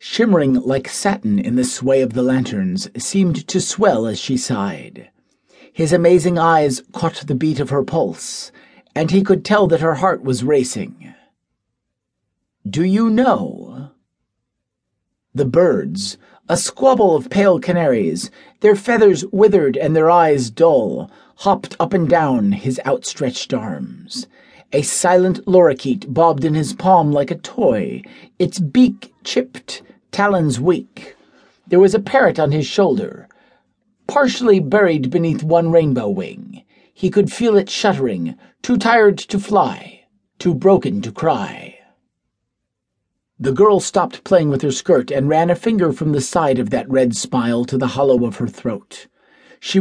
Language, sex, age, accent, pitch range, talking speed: English, male, 50-69, American, 140-200 Hz, 150 wpm